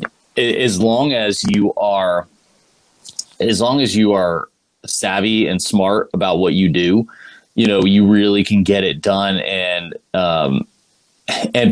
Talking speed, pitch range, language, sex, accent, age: 145 wpm, 100-115 Hz, English, male, American, 30-49